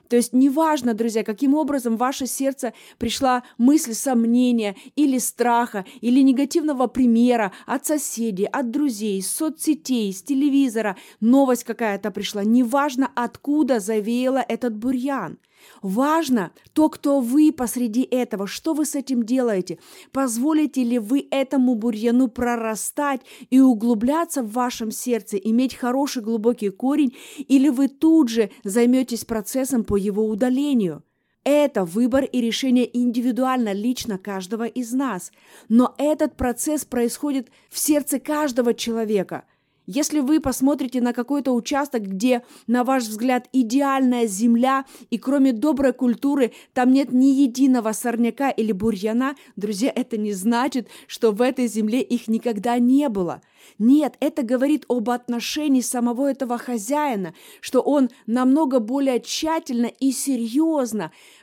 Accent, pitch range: native, 230-275 Hz